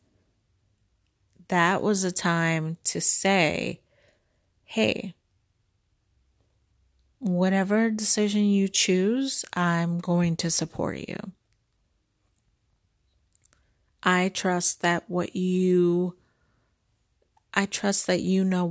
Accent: American